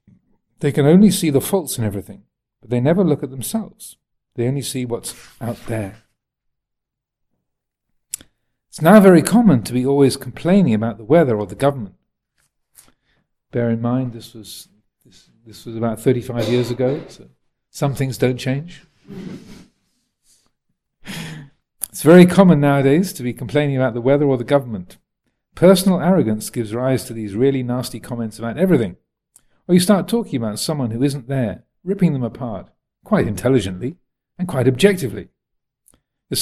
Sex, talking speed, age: male, 150 wpm, 50-69